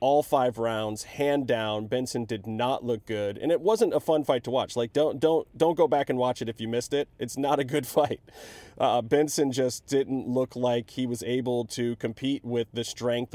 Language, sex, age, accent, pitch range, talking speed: English, male, 30-49, American, 115-140 Hz, 225 wpm